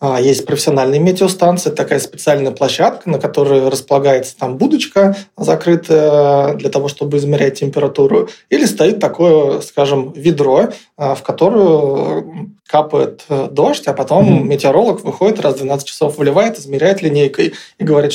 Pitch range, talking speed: 135-160 Hz, 130 wpm